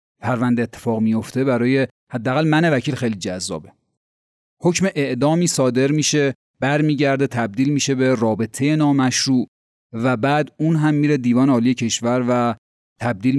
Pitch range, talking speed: 115-160 Hz, 130 wpm